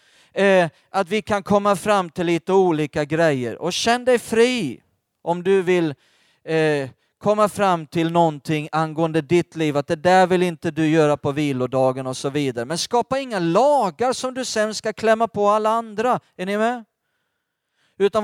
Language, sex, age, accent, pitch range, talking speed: Swedish, male, 40-59, native, 175-235 Hz, 170 wpm